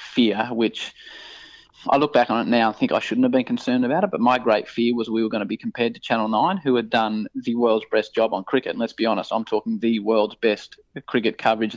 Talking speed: 260 wpm